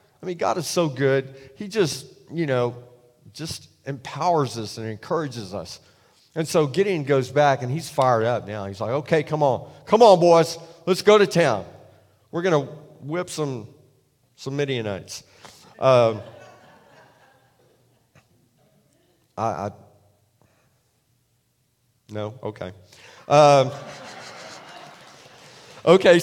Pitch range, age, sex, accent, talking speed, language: 120-170 Hz, 40-59, male, American, 120 wpm, English